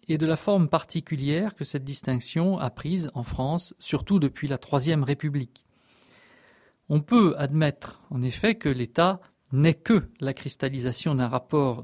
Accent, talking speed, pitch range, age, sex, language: French, 150 wpm, 130-165 Hz, 40-59, male, French